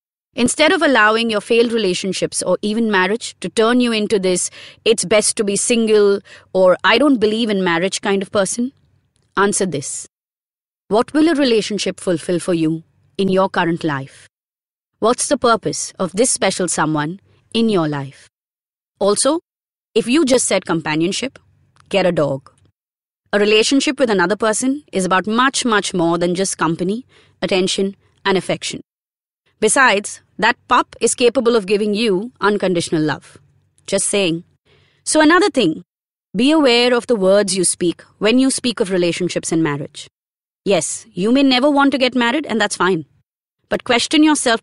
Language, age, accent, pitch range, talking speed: English, 30-49, Indian, 175-235 Hz, 160 wpm